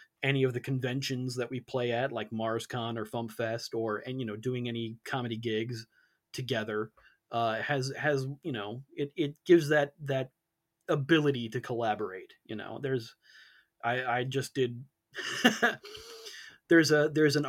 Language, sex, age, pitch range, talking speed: English, male, 30-49, 120-155 Hz, 160 wpm